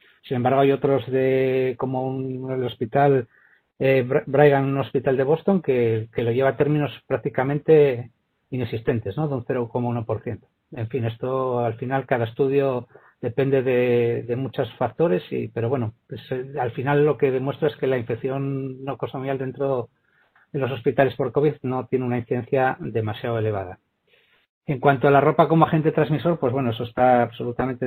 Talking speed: 170 wpm